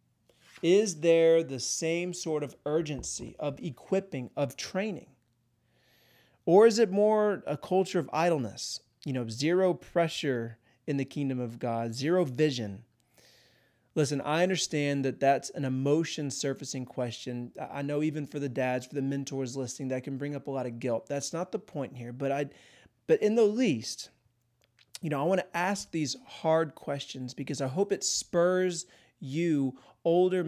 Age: 30-49